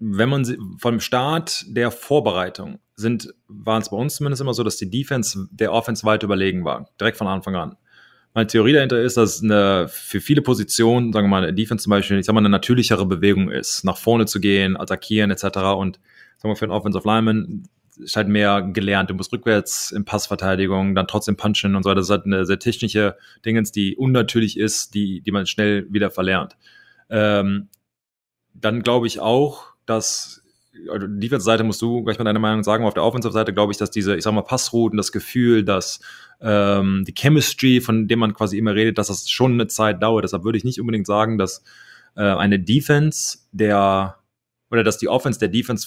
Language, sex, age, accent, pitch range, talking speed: German, male, 30-49, German, 100-120 Hz, 205 wpm